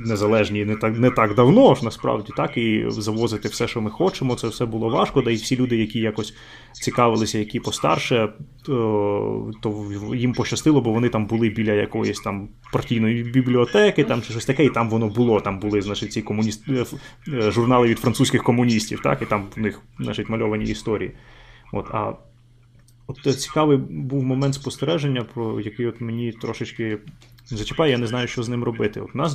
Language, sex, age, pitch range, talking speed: Ukrainian, male, 20-39, 110-130 Hz, 180 wpm